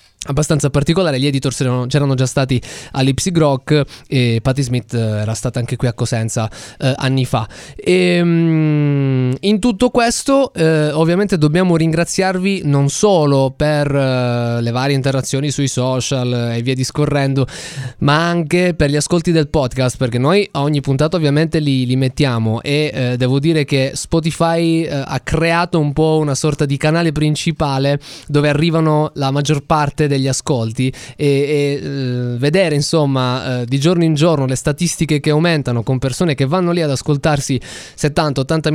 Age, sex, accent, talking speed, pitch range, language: 20-39, male, native, 160 wpm, 135-165 Hz, Italian